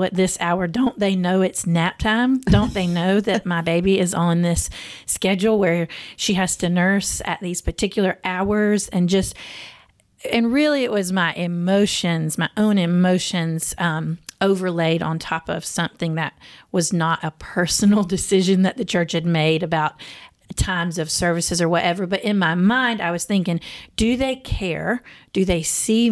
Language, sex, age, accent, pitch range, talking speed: English, female, 40-59, American, 170-200 Hz, 170 wpm